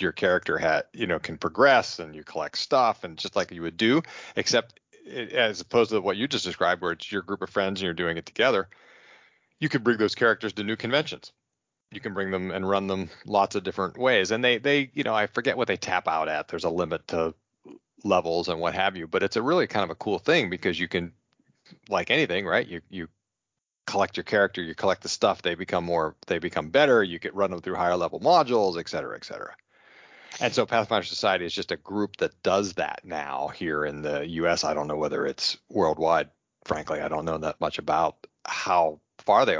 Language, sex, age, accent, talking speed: English, male, 40-59, American, 230 wpm